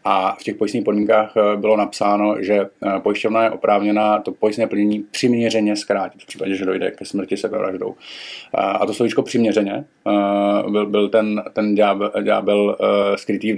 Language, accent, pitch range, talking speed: Czech, native, 100-105 Hz, 160 wpm